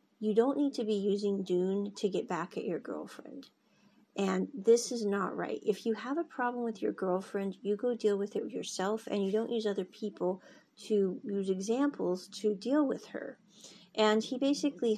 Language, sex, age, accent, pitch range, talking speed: English, female, 40-59, American, 195-240 Hz, 190 wpm